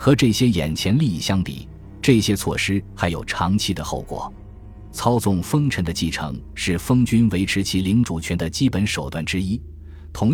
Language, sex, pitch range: Chinese, male, 85-110 Hz